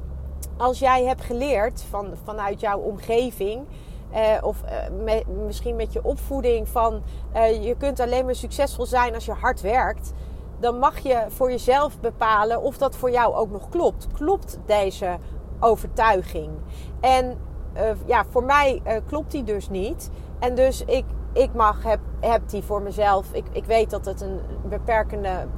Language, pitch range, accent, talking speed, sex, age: Dutch, 200-250 Hz, Dutch, 155 wpm, female, 30-49